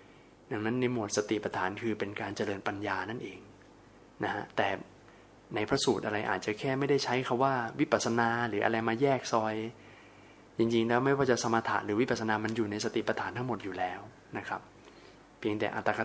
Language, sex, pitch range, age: Thai, male, 105-120 Hz, 20-39